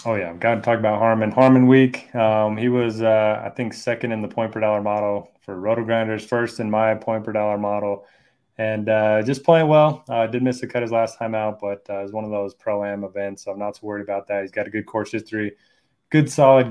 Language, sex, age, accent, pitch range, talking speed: English, male, 20-39, American, 105-120 Hz, 235 wpm